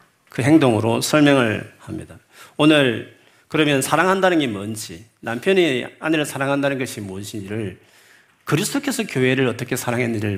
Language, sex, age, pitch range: Korean, male, 40-59, 110-150 Hz